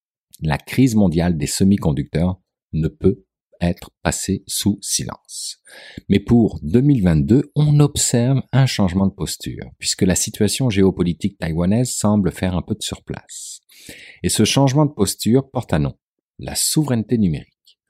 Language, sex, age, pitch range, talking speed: French, male, 50-69, 80-120 Hz, 140 wpm